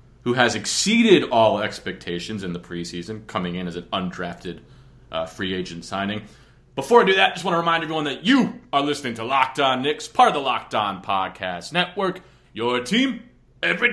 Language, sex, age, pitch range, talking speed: English, male, 30-49, 95-130 Hz, 195 wpm